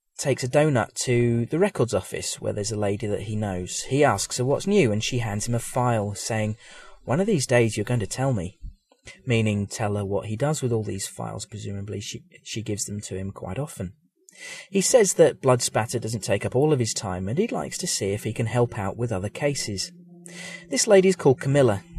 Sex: male